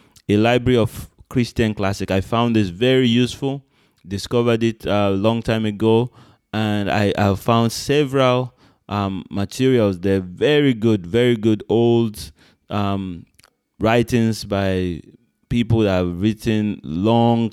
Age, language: 30-49, English